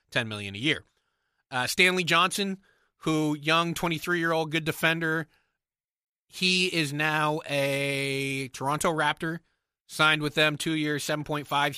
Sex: male